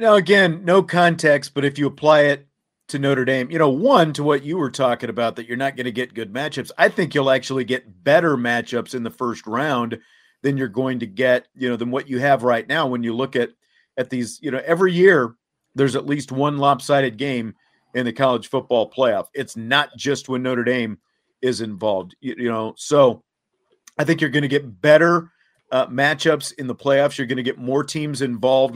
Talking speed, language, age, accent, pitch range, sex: 215 wpm, English, 40-59, American, 125-155 Hz, male